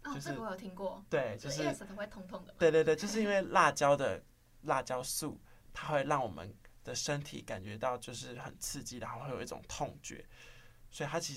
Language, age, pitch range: Chinese, 20-39, 120-150 Hz